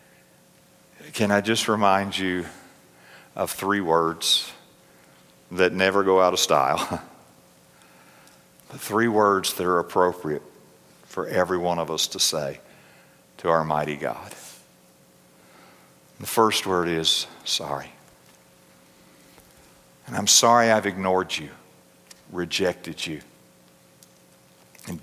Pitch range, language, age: 80-100 Hz, English, 60-79